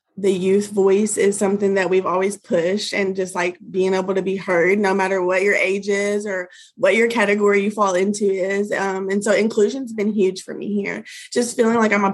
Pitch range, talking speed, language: 195-230 Hz, 225 wpm, English